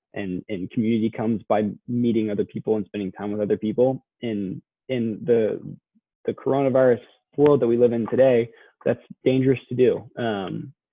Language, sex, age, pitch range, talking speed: English, male, 20-39, 105-130 Hz, 165 wpm